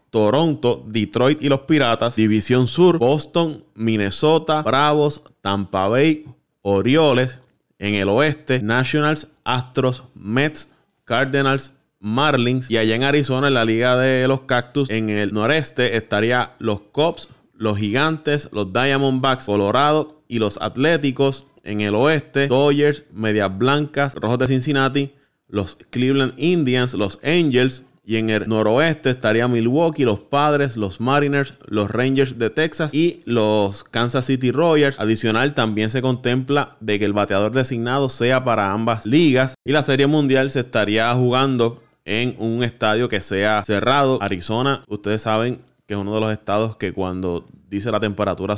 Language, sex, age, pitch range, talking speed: Spanish, male, 20-39, 110-140 Hz, 145 wpm